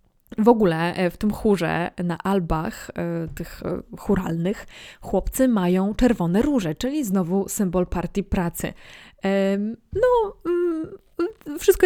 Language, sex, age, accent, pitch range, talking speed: Polish, female, 20-39, native, 175-210 Hz, 100 wpm